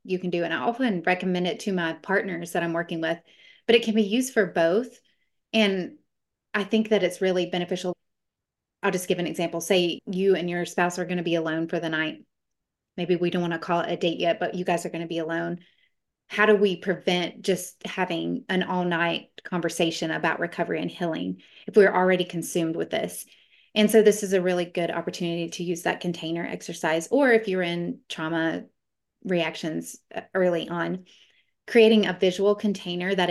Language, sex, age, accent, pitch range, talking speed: English, female, 30-49, American, 170-200 Hz, 200 wpm